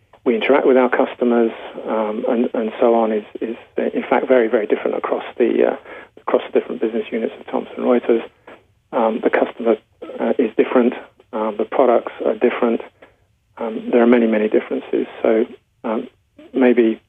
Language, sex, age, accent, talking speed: English, male, 30-49, British, 170 wpm